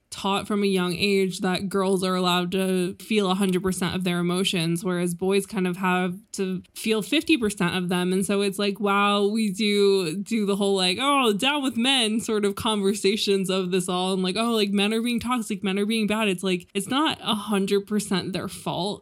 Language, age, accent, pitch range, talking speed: English, 20-39, American, 185-210 Hz, 205 wpm